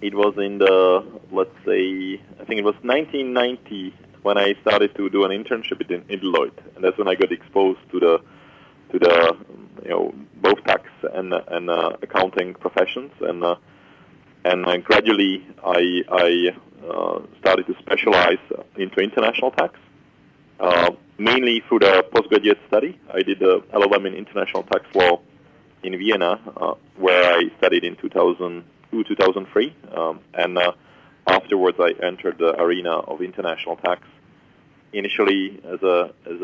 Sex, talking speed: male, 150 wpm